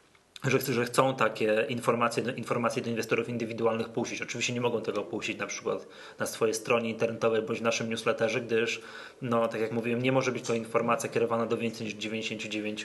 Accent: native